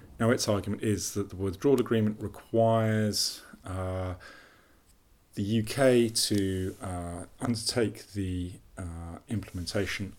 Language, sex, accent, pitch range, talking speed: English, male, British, 90-110 Hz, 105 wpm